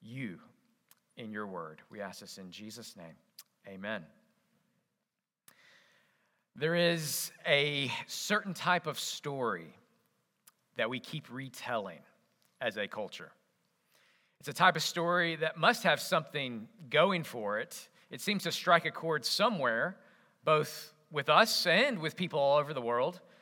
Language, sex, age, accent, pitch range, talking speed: English, male, 40-59, American, 135-170 Hz, 140 wpm